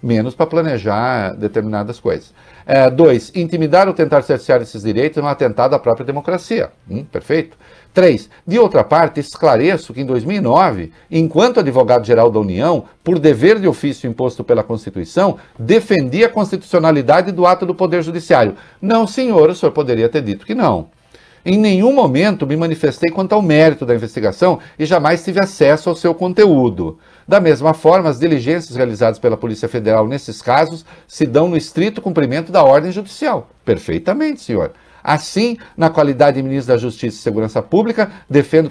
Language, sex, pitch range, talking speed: English, male, 135-190 Hz, 165 wpm